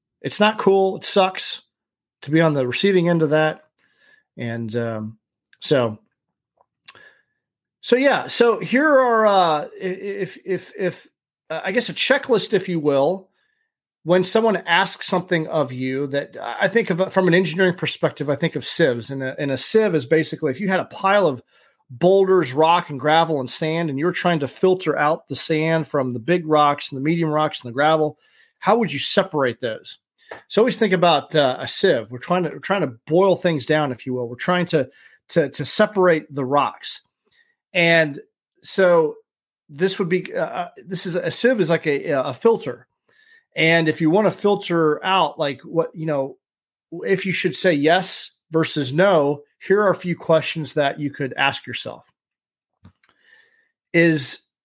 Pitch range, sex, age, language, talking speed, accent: 150-195 Hz, male, 40-59, English, 180 wpm, American